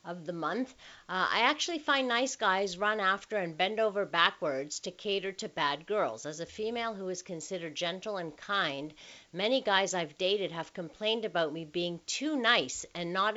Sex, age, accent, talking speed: female, 50-69, American, 190 wpm